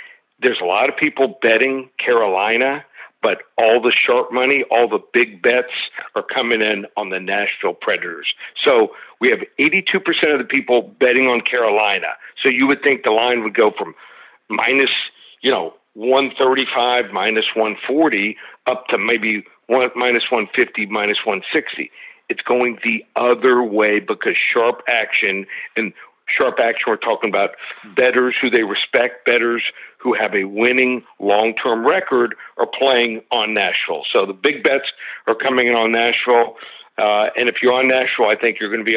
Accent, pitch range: American, 115-175 Hz